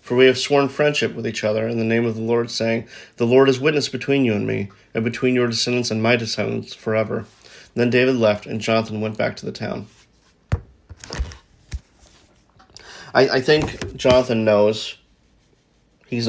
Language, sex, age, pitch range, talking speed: English, male, 30-49, 105-120 Hz, 175 wpm